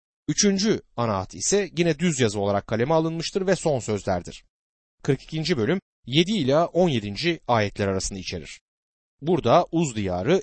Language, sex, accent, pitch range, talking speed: Turkish, male, native, 110-175 Hz, 130 wpm